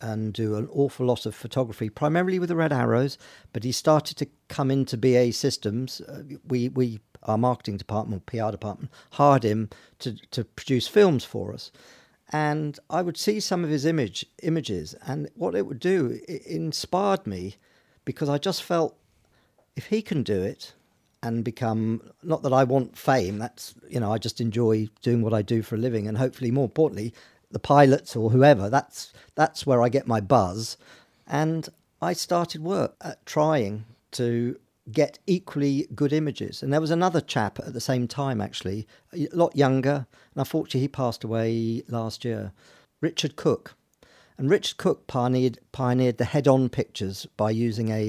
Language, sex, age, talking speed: English, male, 50-69, 175 wpm